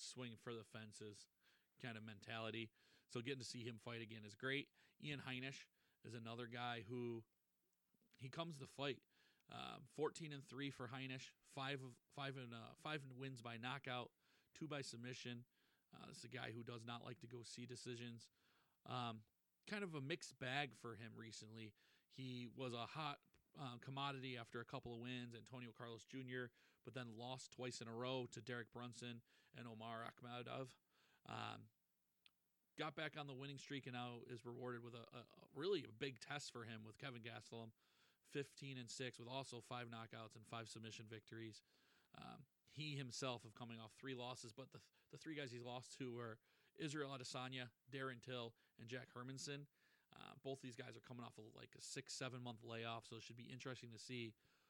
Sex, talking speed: male, 190 wpm